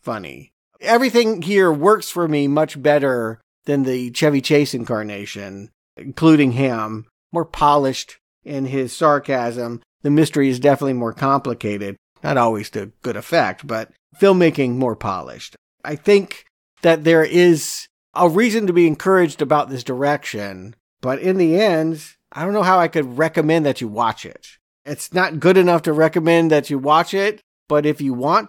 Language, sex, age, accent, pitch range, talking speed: English, male, 50-69, American, 125-165 Hz, 160 wpm